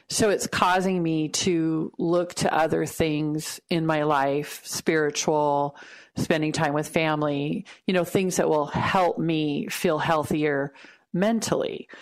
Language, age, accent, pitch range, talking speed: English, 40-59, American, 155-180 Hz, 135 wpm